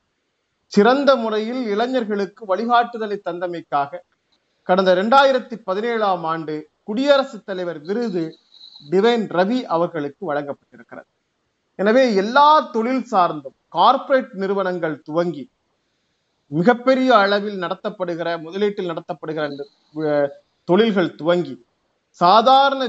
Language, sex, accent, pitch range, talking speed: Tamil, male, native, 175-235 Hz, 80 wpm